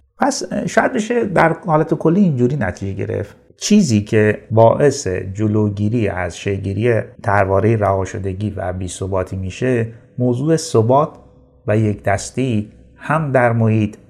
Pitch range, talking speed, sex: 100-125 Hz, 125 wpm, male